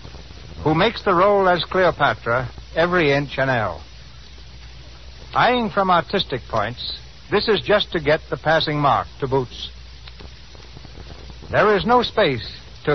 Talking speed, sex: 135 wpm, male